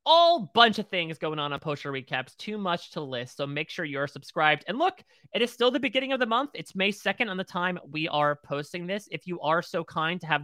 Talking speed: 265 wpm